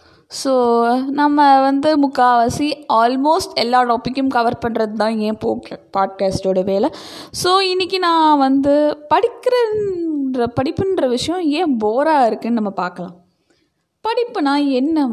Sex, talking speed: female, 105 wpm